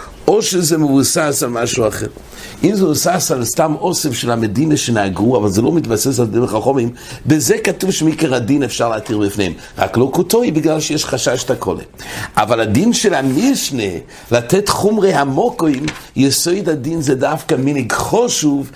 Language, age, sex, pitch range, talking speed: English, 60-79, male, 115-160 Hz, 145 wpm